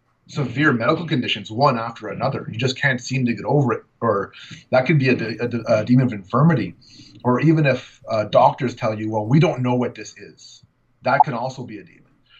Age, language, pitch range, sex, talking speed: 30-49, English, 110-140 Hz, male, 225 wpm